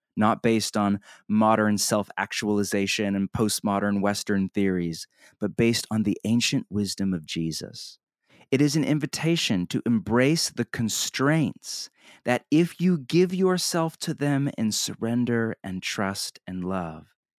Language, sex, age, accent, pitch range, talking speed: English, male, 30-49, American, 100-135 Hz, 135 wpm